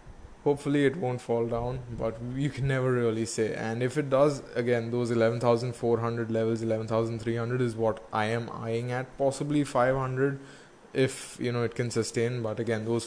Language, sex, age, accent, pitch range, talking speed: English, male, 20-39, Indian, 115-130 Hz, 200 wpm